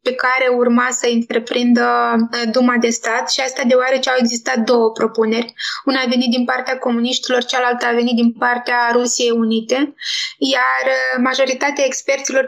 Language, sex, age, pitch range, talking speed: Romanian, female, 20-39, 245-270 Hz, 150 wpm